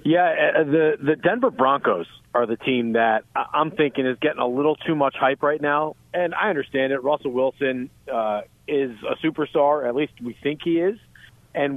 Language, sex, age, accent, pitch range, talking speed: English, male, 40-59, American, 125-150 Hz, 190 wpm